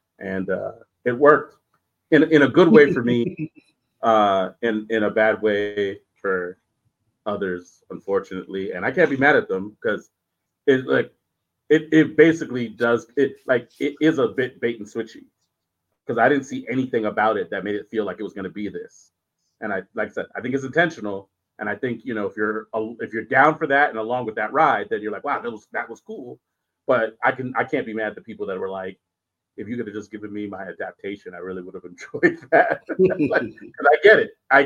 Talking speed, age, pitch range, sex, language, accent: 225 wpm, 30-49, 105-150 Hz, male, English, American